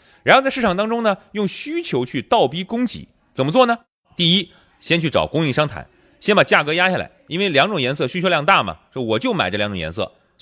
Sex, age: male, 30-49